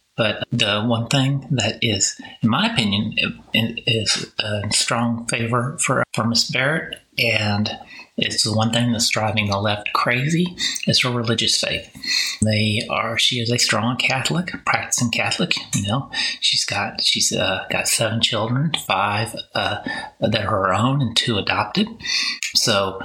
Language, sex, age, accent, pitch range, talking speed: English, male, 30-49, American, 110-130 Hz, 160 wpm